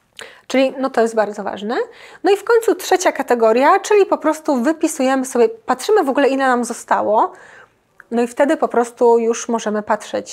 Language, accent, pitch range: Polish, native, 225-290 Hz